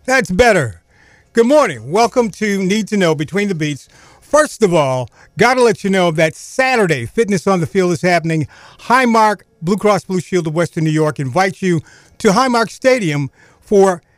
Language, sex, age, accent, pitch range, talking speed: English, male, 50-69, American, 160-205 Hz, 180 wpm